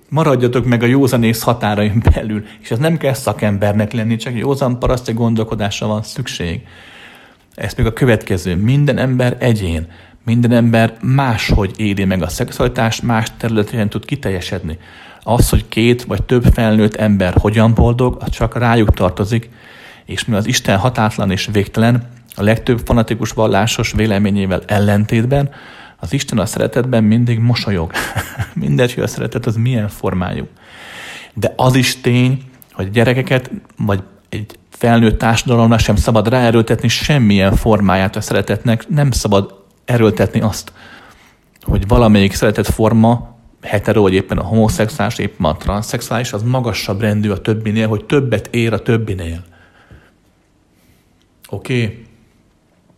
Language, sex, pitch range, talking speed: Hungarian, male, 105-120 Hz, 135 wpm